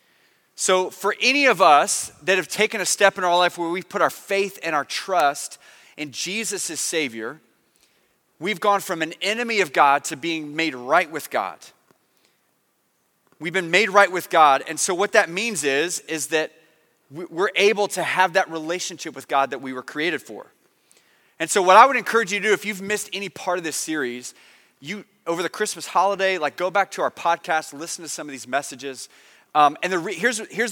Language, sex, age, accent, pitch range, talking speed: English, male, 30-49, American, 145-185 Hz, 205 wpm